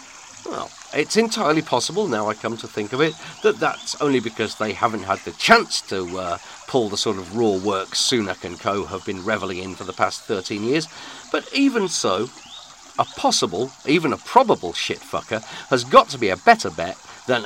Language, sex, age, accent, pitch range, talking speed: English, male, 40-59, British, 115-140 Hz, 195 wpm